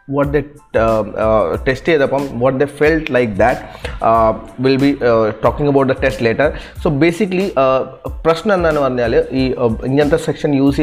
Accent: native